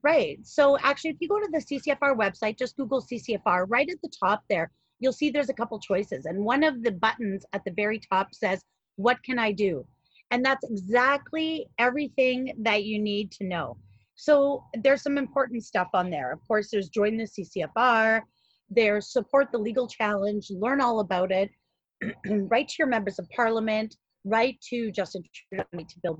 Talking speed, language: 185 wpm, English